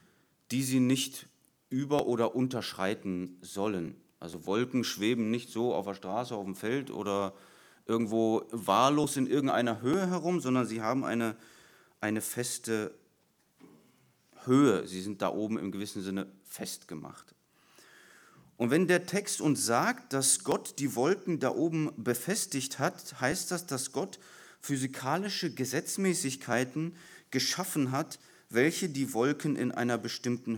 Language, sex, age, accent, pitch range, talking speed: German, male, 30-49, German, 115-145 Hz, 135 wpm